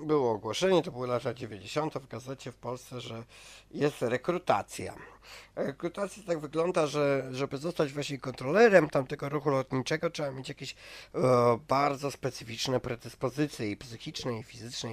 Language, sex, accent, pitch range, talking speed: Polish, male, native, 120-155 Hz, 135 wpm